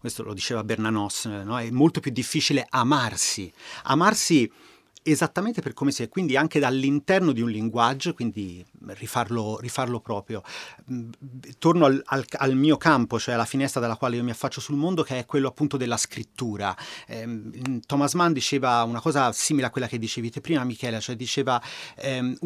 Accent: native